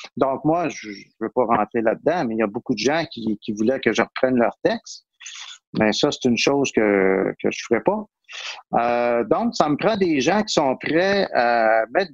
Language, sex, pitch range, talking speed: French, male, 120-165 Hz, 225 wpm